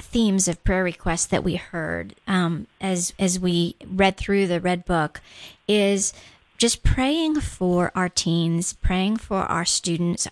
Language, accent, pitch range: English, American, 170-195 Hz